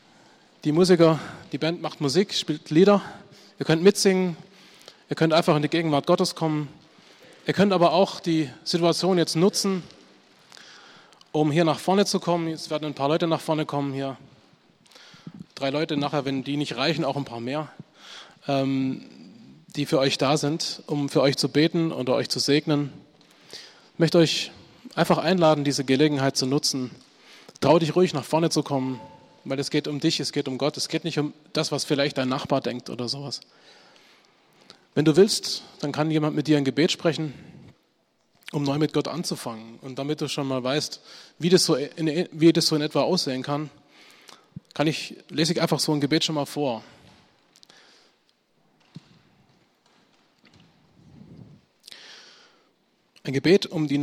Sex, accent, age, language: male, German, 20-39, German